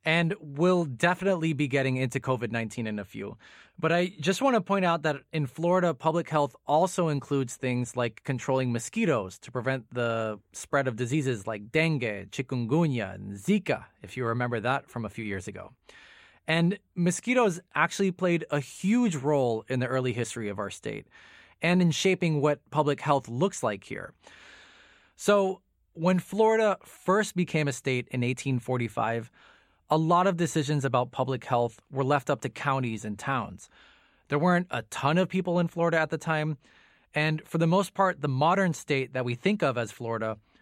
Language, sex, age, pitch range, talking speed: English, male, 20-39, 125-175 Hz, 175 wpm